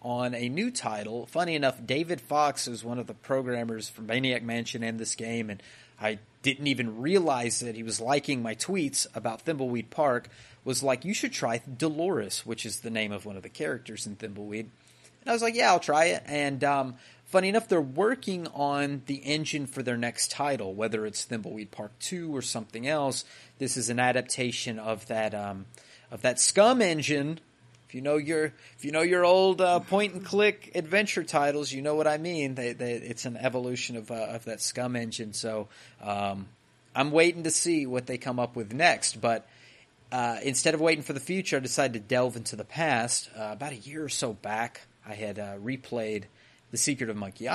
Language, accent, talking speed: English, American, 200 wpm